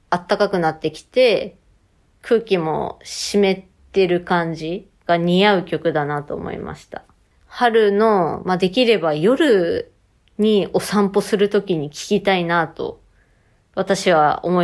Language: Japanese